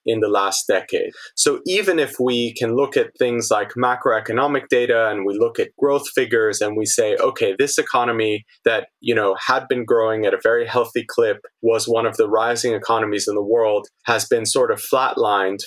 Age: 20-39